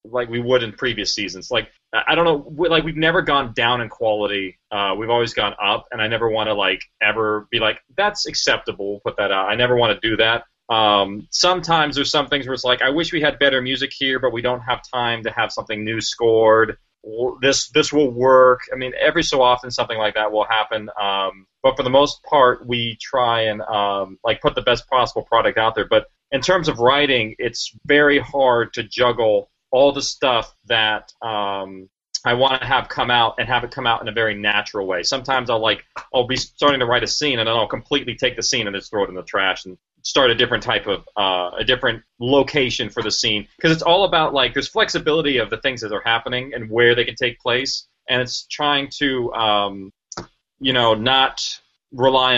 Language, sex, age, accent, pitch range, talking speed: English, male, 30-49, American, 110-135 Hz, 225 wpm